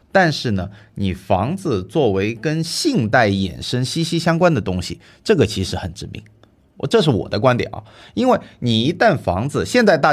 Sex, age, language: male, 30-49, Chinese